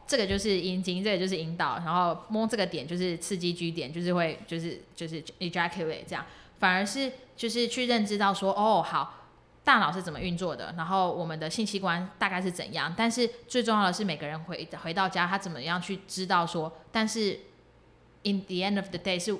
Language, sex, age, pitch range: Chinese, female, 20-39, 170-195 Hz